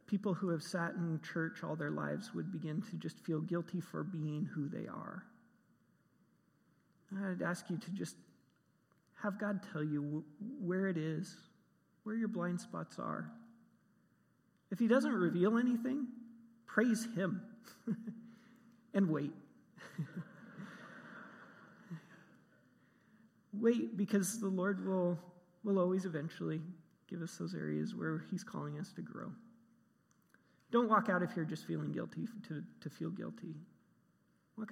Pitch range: 165-205 Hz